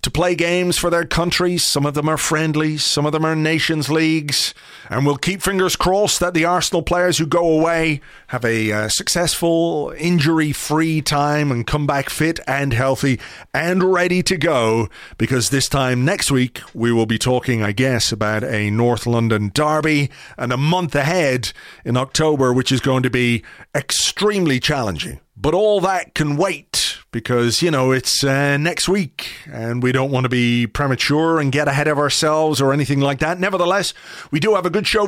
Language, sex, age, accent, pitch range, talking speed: English, male, 30-49, British, 125-165 Hz, 185 wpm